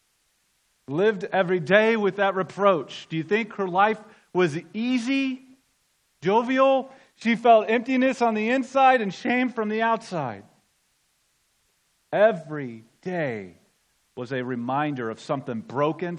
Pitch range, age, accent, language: 135-180 Hz, 40-59, American, English